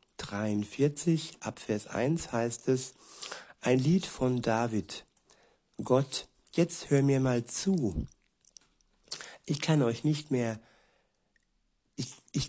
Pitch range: 115-140 Hz